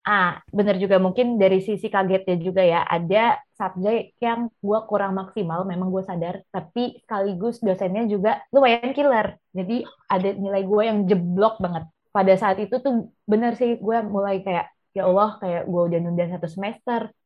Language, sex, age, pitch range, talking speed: Indonesian, female, 20-39, 180-220 Hz, 165 wpm